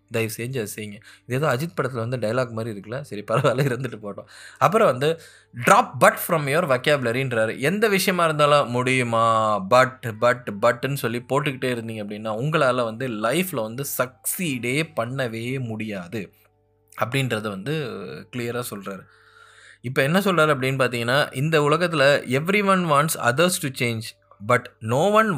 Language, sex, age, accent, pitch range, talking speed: Tamil, male, 20-39, native, 115-150 Hz, 135 wpm